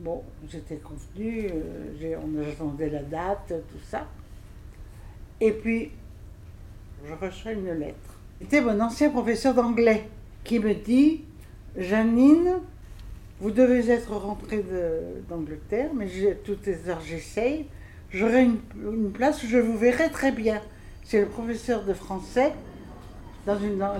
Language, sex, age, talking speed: French, female, 60-79, 145 wpm